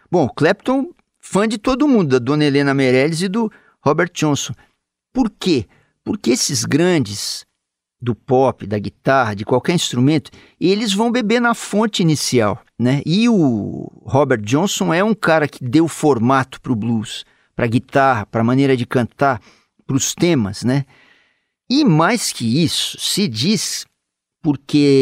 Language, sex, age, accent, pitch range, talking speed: Portuguese, male, 50-69, Brazilian, 120-180 Hz, 155 wpm